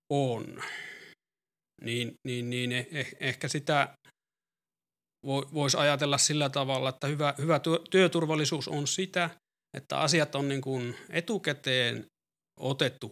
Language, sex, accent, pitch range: Finnish, male, native, 125-155 Hz